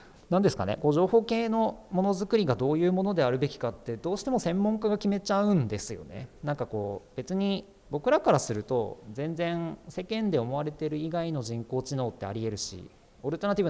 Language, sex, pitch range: Japanese, male, 110-175 Hz